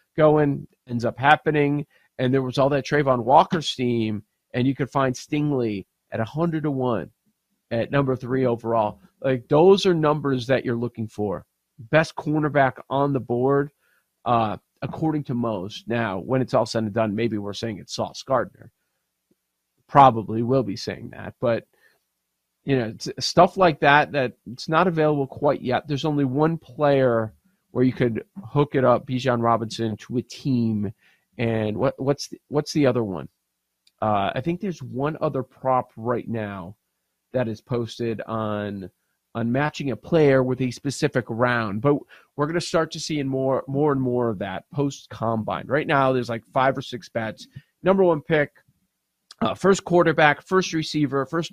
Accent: American